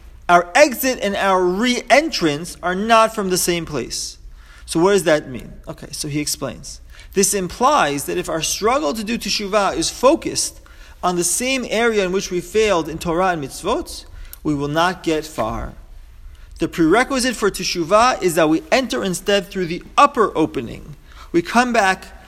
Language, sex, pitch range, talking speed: English, male, 155-225 Hz, 170 wpm